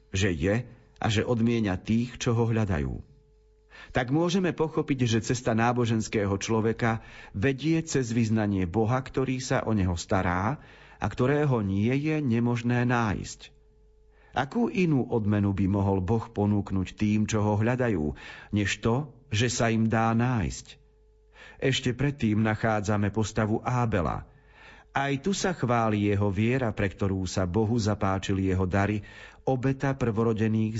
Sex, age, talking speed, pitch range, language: male, 40-59, 135 wpm, 105-130 Hz, Slovak